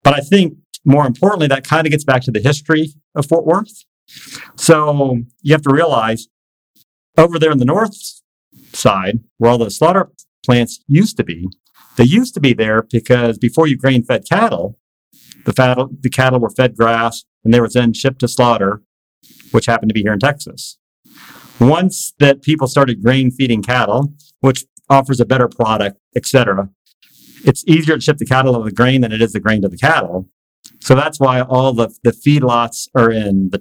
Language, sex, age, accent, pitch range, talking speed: English, male, 50-69, American, 115-140 Hz, 185 wpm